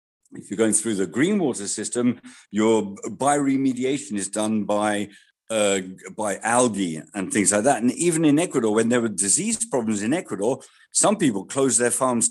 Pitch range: 105-135 Hz